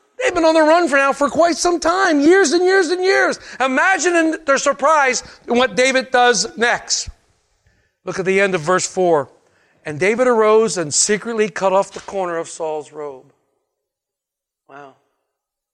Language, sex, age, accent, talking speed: English, male, 50-69, American, 170 wpm